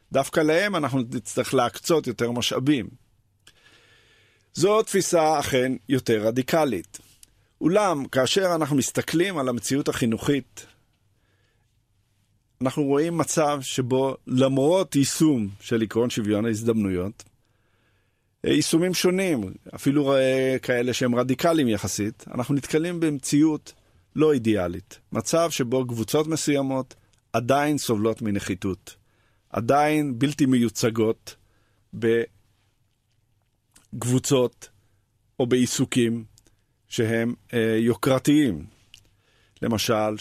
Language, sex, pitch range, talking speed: Hebrew, male, 105-135 Hz, 85 wpm